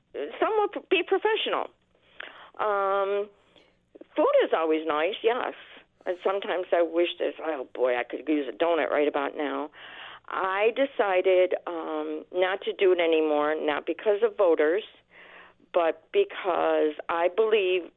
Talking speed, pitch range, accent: 135 wpm, 155-200 Hz, American